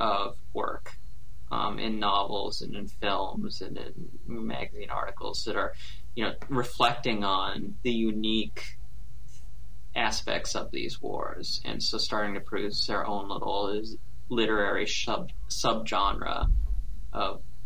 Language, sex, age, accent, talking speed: English, male, 30-49, American, 120 wpm